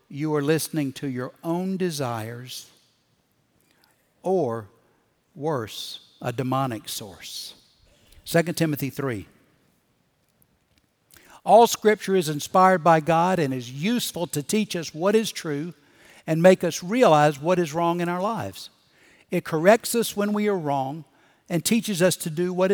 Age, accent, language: 60-79, American, English